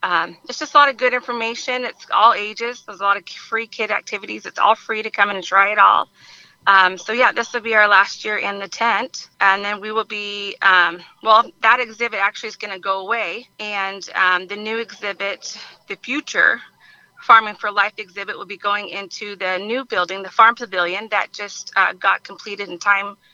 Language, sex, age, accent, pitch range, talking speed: English, female, 30-49, American, 195-230 Hz, 215 wpm